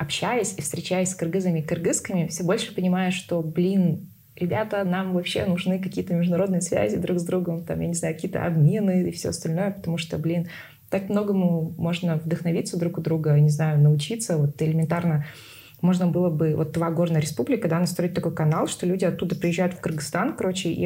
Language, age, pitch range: Russian, 20-39, 155-180 Hz